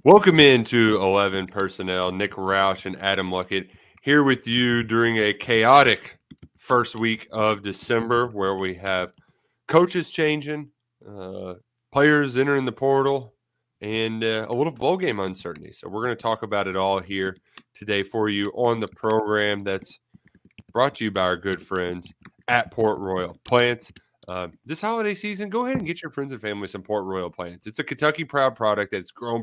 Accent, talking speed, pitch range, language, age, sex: American, 175 wpm, 95-130 Hz, English, 30-49, male